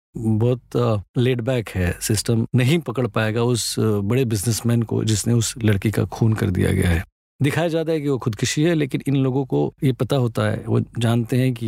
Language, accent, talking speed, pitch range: Hindi, native, 200 wpm, 115-160 Hz